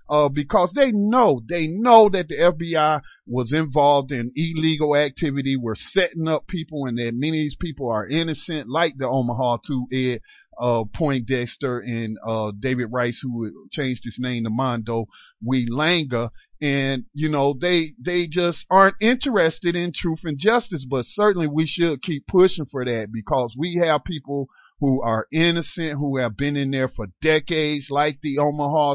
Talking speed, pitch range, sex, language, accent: 170 wpm, 125-170 Hz, male, English, American